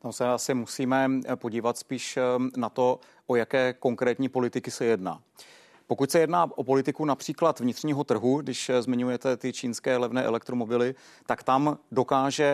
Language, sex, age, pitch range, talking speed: Czech, male, 40-59, 120-140 Hz, 150 wpm